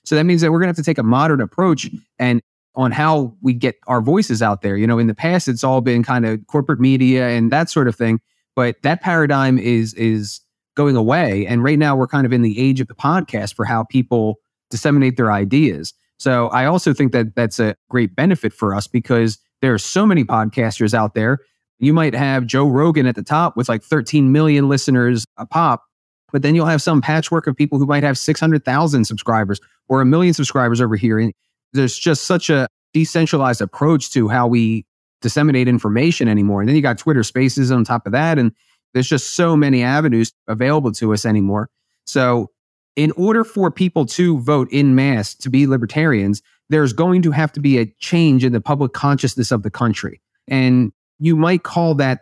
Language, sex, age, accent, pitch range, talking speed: English, male, 30-49, American, 115-150 Hz, 210 wpm